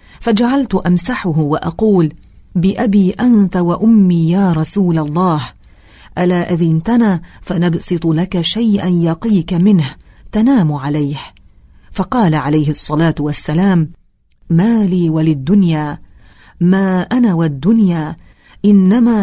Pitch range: 155-200 Hz